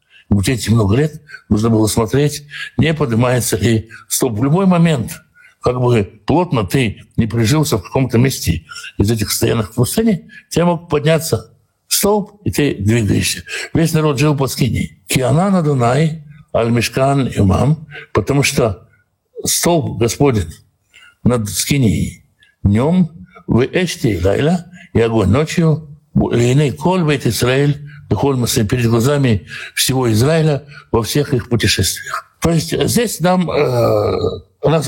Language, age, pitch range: Russian, 60-79, 115-155 Hz